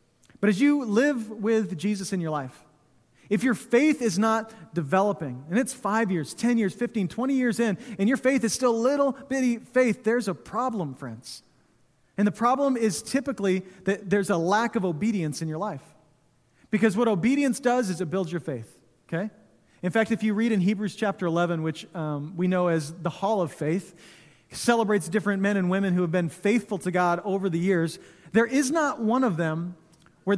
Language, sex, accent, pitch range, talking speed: English, male, American, 175-235 Hz, 200 wpm